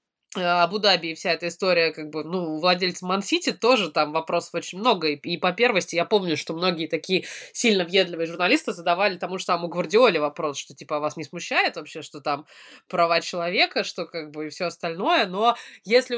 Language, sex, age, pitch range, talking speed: Russian, female, 20-39, 175-220 Hz, 195 wpm